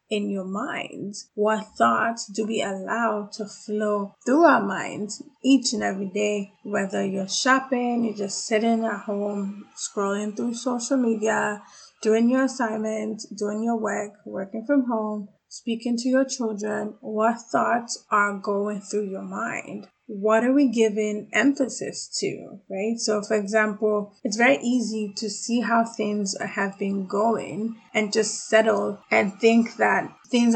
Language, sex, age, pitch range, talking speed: English, female, 20-39, 205-230 Hz, 150 wpm